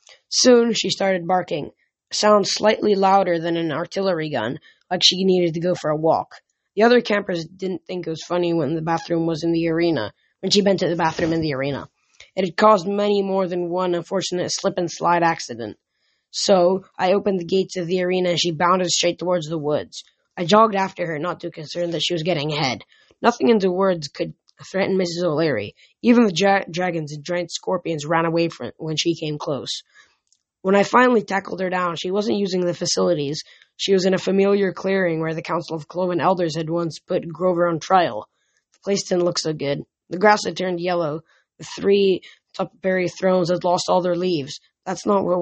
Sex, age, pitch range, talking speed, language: female, 10-29, 170-190 Hz, 200 wpm, English